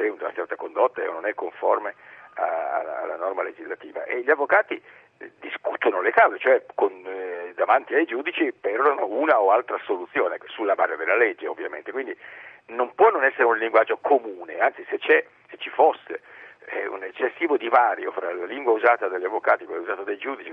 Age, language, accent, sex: 50-69, Italian, native, male